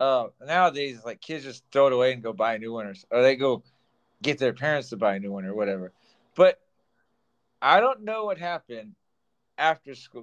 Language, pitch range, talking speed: English, 125-160 Hz, 205 wpm